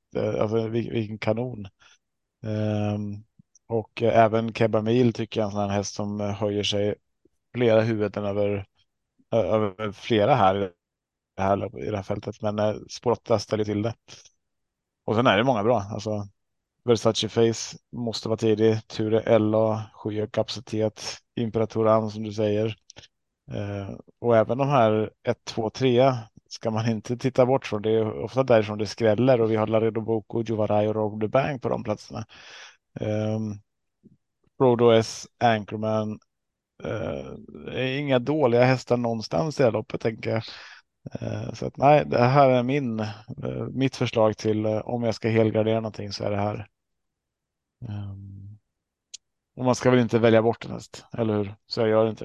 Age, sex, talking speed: 30-49, male, 160 wpm